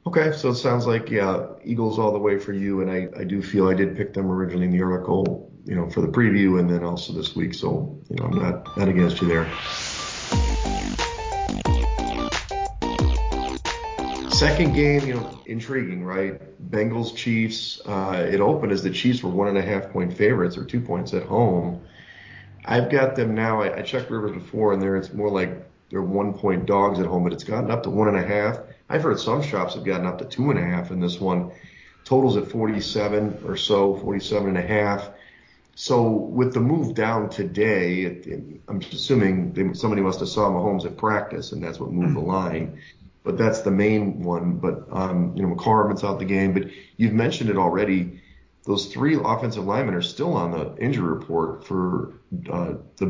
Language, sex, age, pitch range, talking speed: English, male, 40-59, 90-115 Hz, 200 wpm